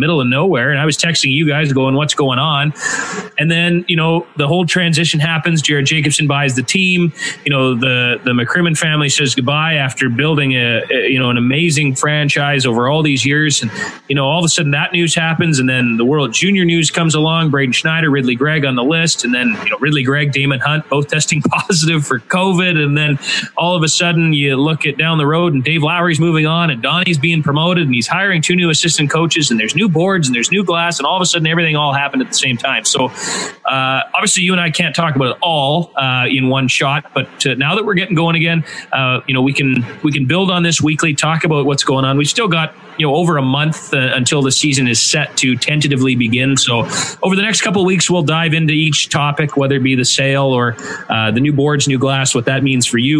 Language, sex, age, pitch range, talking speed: English, male, 30-49, 135-165 Hz, 245 wpm